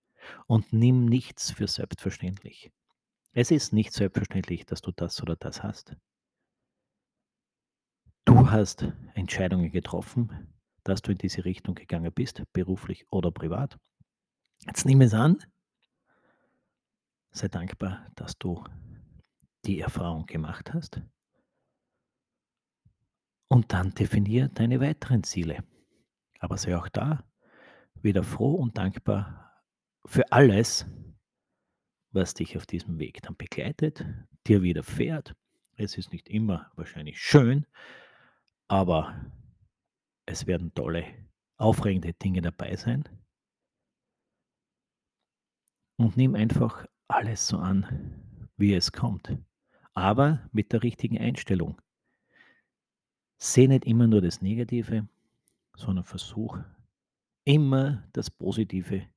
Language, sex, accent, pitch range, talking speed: German, male, Austrian, 90-120 Hz, 110 wpm